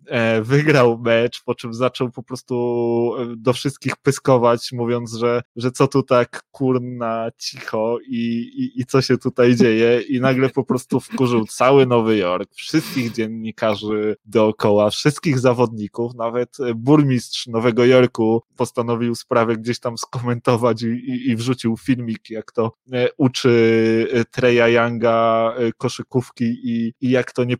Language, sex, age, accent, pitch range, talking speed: Polish, male, 20-39, native, 115-130 Hz, 135 wpm